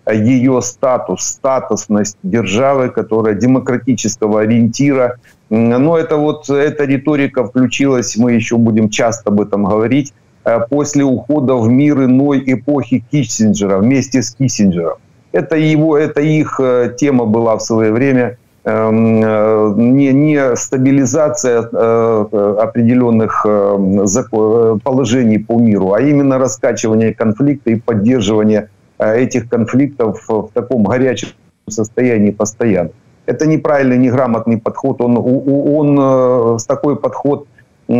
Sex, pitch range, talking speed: male, 110-135 Hz, 105 wpm